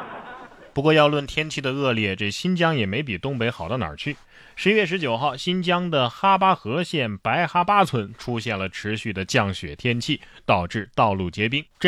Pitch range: 110-155 Hz